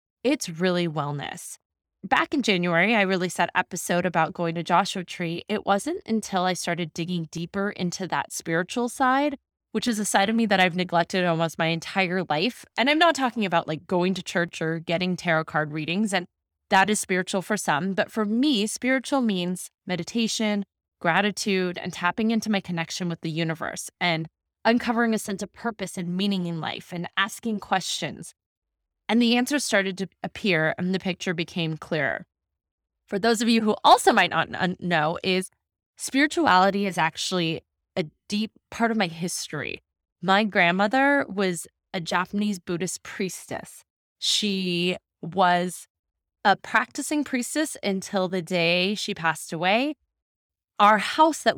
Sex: female